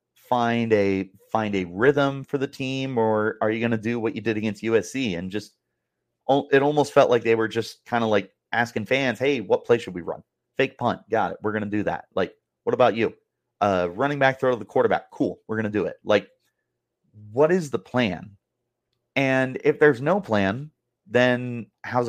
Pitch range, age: 110-135 Hz, 30-49